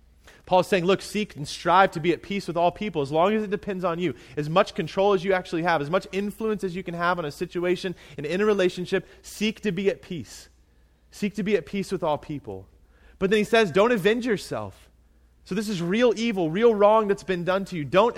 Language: English